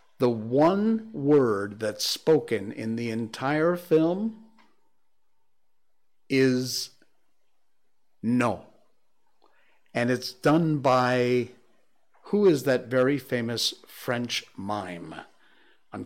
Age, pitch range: 50-69, 115-145 Hz